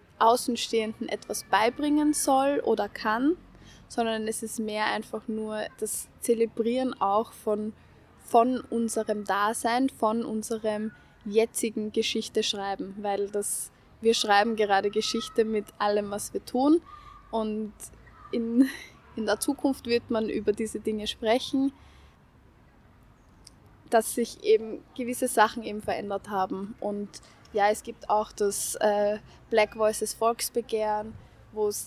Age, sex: 10-29, female